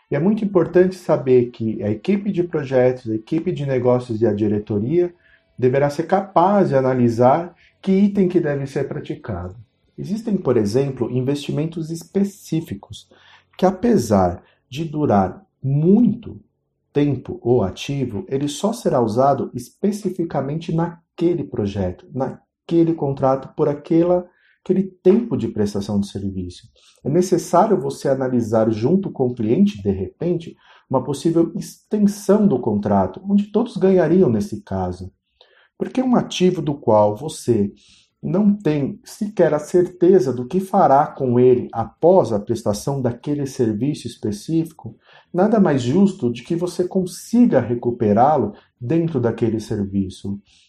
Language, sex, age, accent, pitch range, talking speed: Portuguese, male, 40-59, Brazilian, 110-180 Hz, 130 wpm